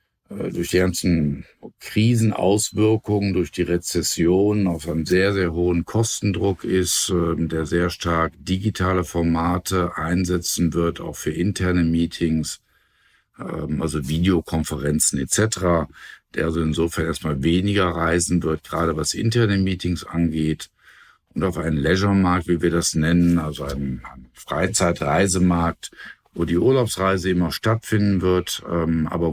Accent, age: German, 50-69